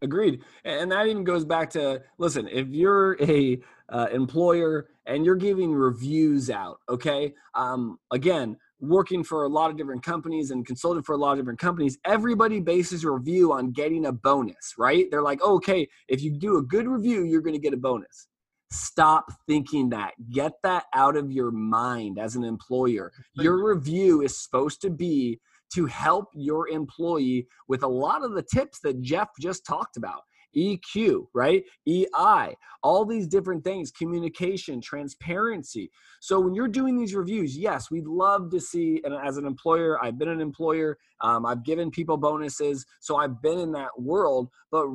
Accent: American